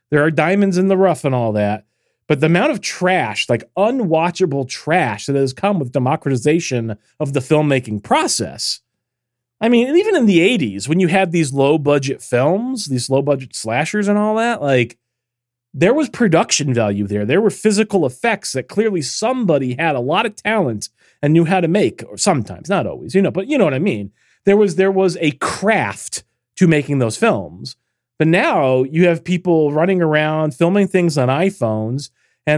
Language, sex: English, male